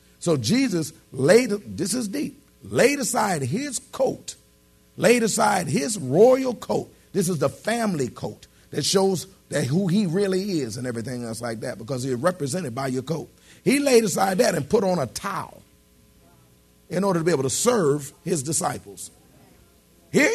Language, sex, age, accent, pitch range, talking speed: English, male, 40-59, American, 130-210 Hz, 170 wpm